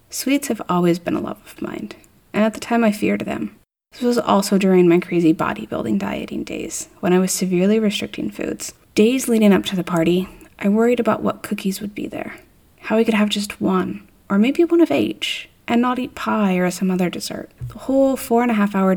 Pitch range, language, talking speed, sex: 185-225 Hz, English, 220 wpm, female